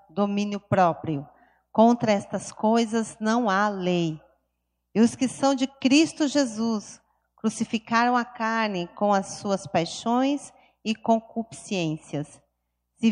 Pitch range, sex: 200-260 Hz, female